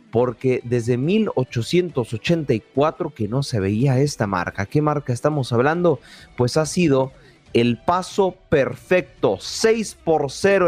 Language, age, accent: Spanish, 30-49, Mexican